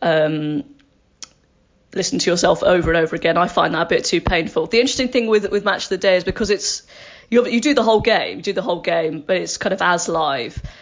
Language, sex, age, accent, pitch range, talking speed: English, female, 20-39, British, 165-210 Hz, 250 wpm